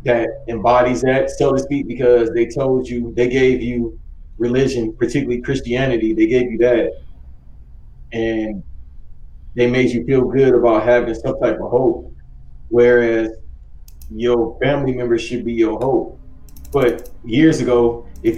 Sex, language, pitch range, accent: male, English, 110-130 Hz, American